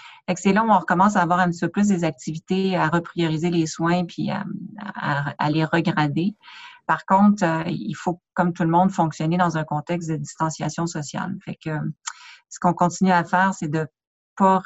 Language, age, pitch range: French, 40-59, 160-180 Hz